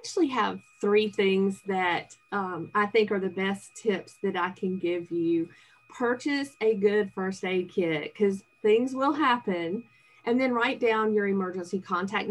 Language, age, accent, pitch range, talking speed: English, 40-59, American, 185-225 Hz, 170 wpm